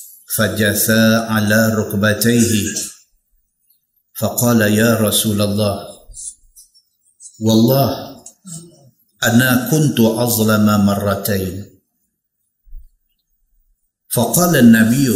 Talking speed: 65 wpm